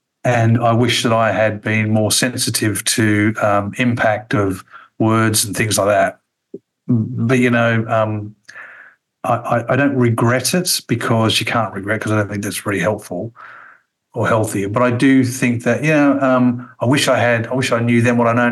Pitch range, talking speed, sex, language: 100-120 Hz, 195 wpm, male, English